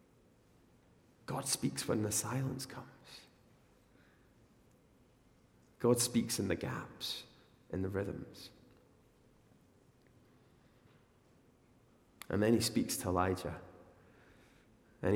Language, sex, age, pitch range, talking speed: English, male, 30-49, 105-125 Hz, 85 wpm